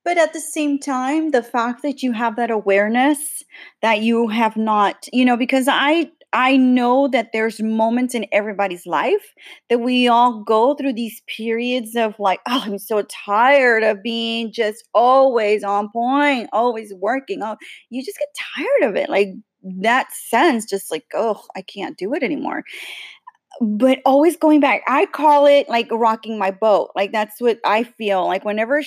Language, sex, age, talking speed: English, female, 30-49, 175 wpm